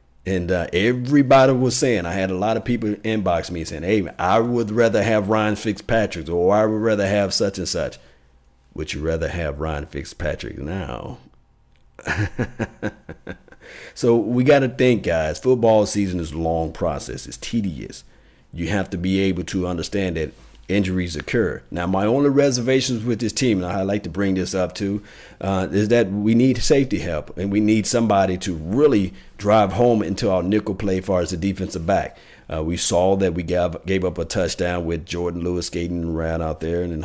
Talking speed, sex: 195 wpm, male